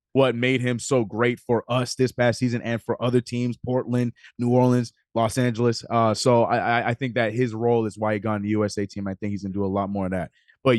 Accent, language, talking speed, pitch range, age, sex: American, English, 260 wpm, 115-140 Hz, 20-39, male